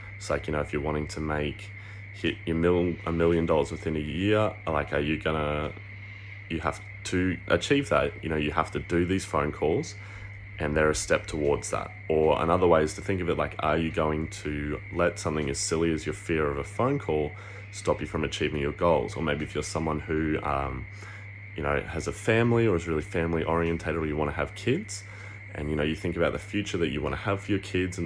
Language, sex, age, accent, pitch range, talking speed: English, male, 20-39, Australian, 75-100 Hz, 240 wpm